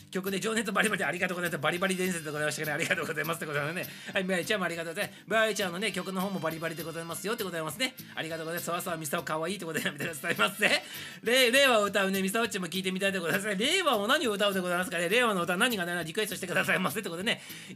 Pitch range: 165-210 Hz